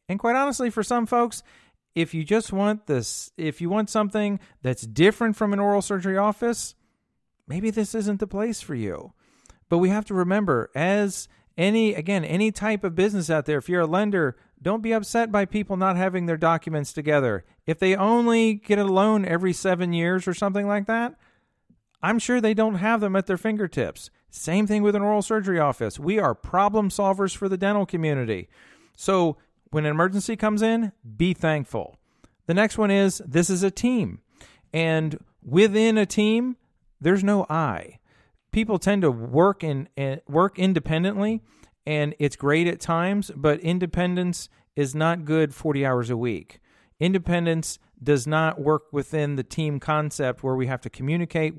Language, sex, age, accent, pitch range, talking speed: English, male, 40-59, American, 150-205 Hz, 175 wpm